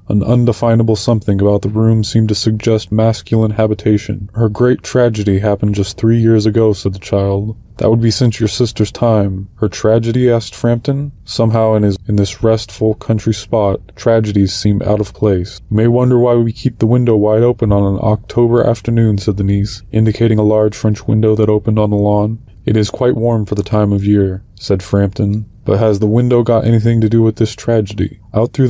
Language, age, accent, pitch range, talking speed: English, 20-39, American, 105-115 Hz, 200 wpm